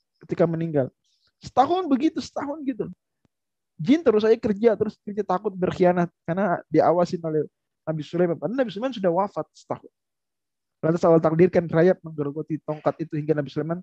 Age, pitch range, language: 20-39, 150-180 Hz, Indonesian